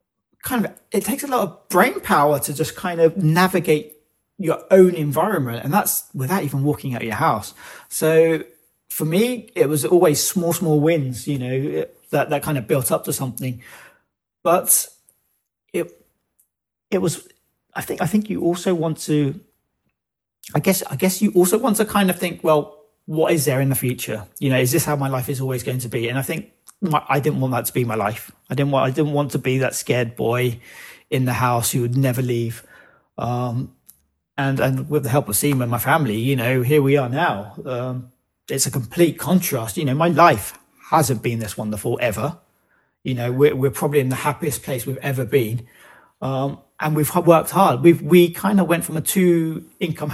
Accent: British